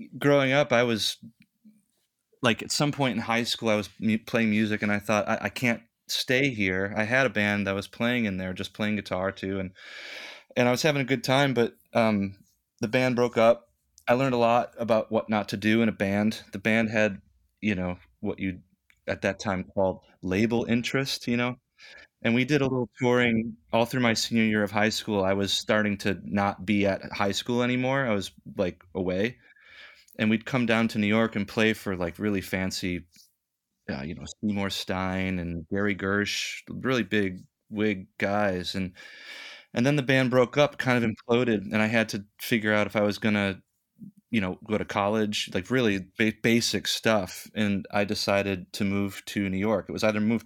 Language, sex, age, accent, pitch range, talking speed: English, male, 30-49, American, 100-115 Hz, 205 wpm